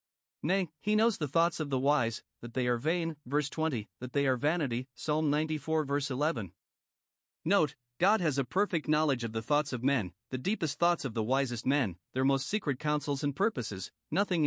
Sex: male